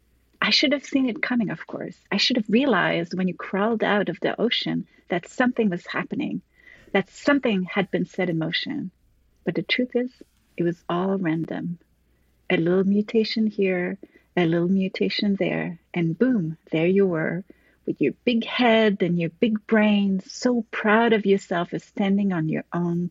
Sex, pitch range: female, 170-230 Hz